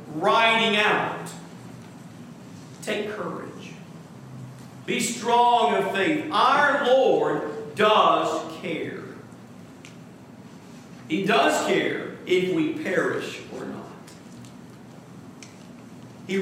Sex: male